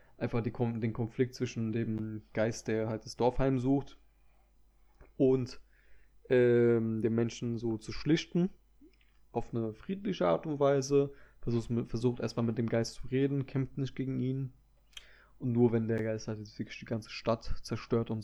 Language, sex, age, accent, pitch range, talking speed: German, male, 20-39, German, 115-135 Hz, 160 wpm